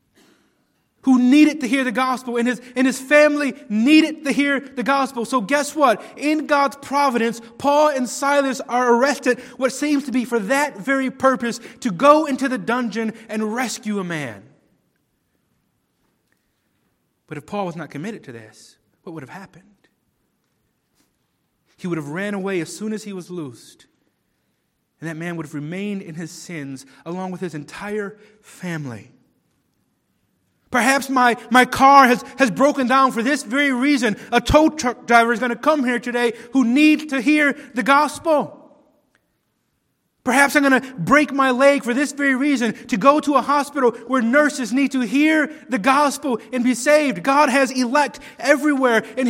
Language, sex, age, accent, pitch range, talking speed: English, male, 30-49, American, 215-280 Hz, 170 wpm